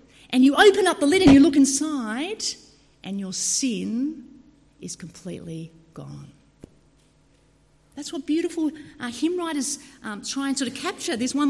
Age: 50-69